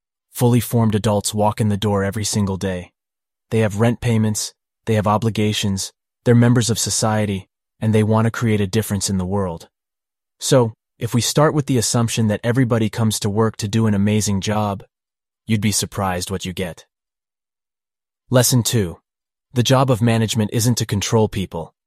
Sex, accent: male, American